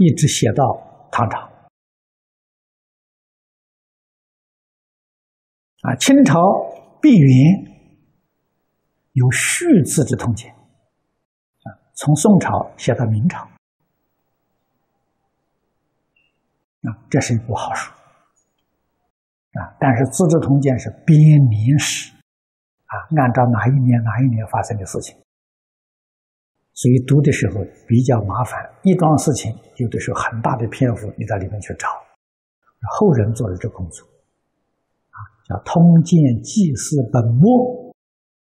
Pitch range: 110-150 Hz